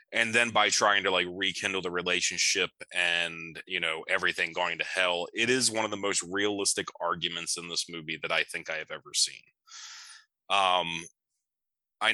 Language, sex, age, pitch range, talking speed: English, male, 20-39, 85-105 Hz, 180 wpm